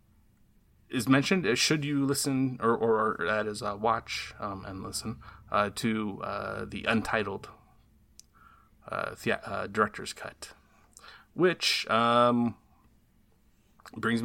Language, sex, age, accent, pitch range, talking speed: English, male, 30-49, American, 105-120 Hz, 120 wpm